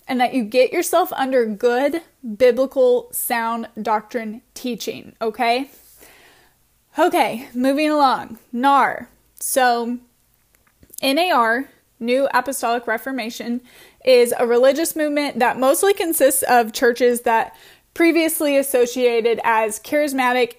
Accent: American